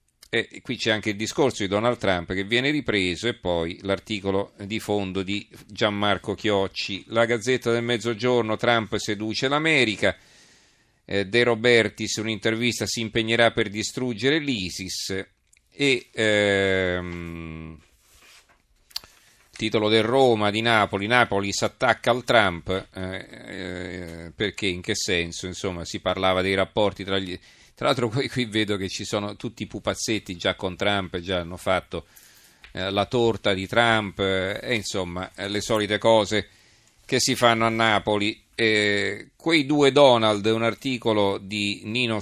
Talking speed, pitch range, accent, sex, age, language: 140 wpm, 95-115 Hz, native, male, 40-59, Italian